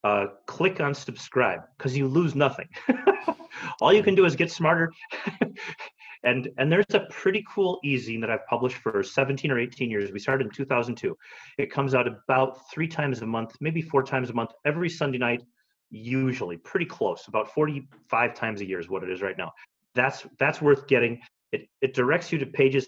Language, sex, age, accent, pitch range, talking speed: Dutch, male, 30-49, American, 120-165 Hz, 195 wpm